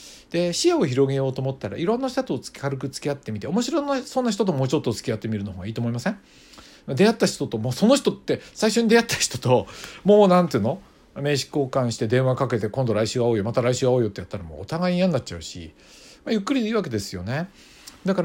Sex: male